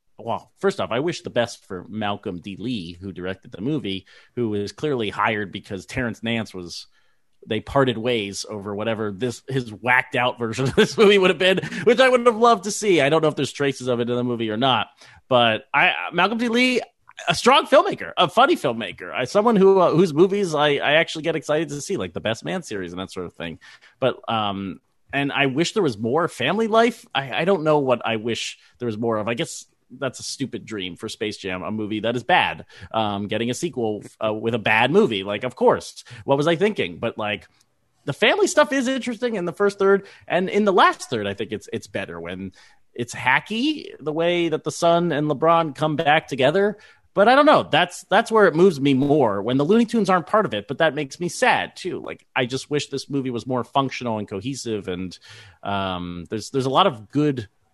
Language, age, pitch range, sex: English, 30-49, 110-175 Hz, male